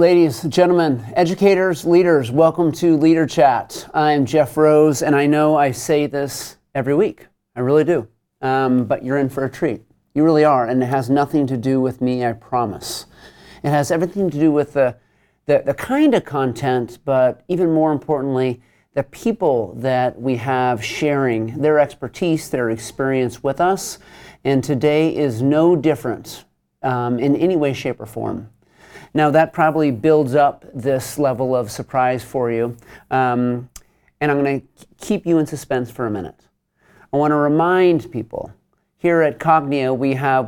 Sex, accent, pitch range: male, American, 125-155 Hz